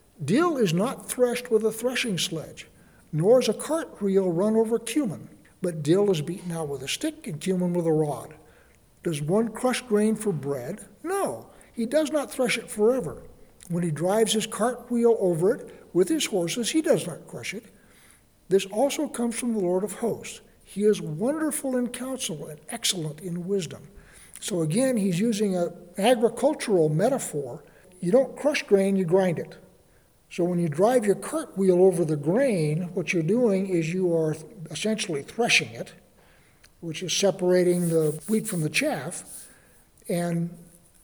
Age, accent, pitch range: 60-79, American, 170-230 Hz